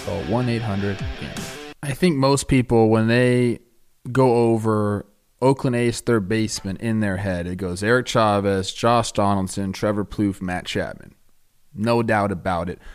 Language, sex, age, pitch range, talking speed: English, male, 20-39, 100-130 Hz, 140 wpm